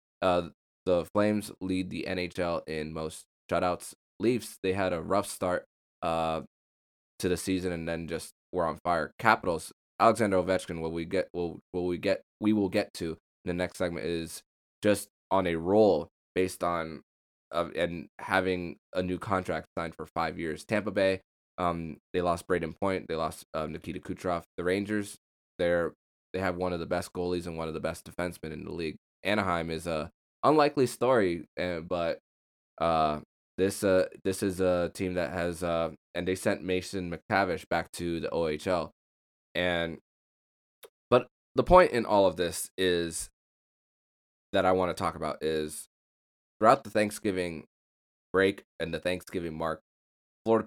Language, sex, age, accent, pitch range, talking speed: English, male, 20-39, American, 80-95 Hz, 165 wpm